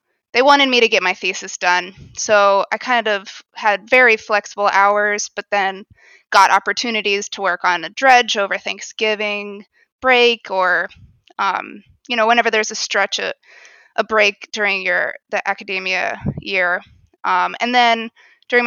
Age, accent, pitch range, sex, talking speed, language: 20-39, American, 195-230 Hz, female, 155 wpm, English